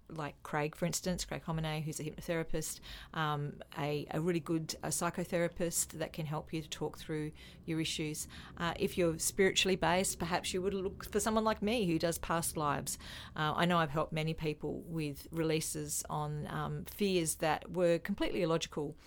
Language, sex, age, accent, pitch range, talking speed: English, female, 40-59, Australian, 155-180 Hz, 180 wpm